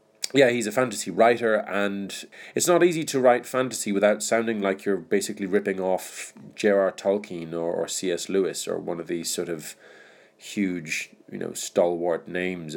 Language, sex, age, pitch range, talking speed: English, male, 30-49, 95-115 Hz, 170 wpm